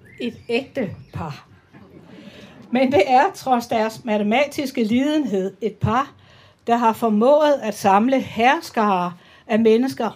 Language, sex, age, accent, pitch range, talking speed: Danish, female, 60-79, native, 205-250 Hz, 120 wpm